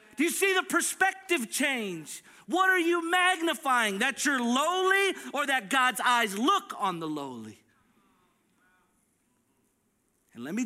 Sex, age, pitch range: male, 40-59, 245-330 Hz